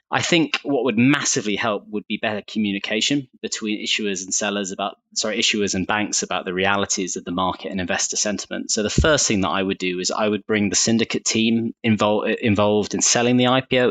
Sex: male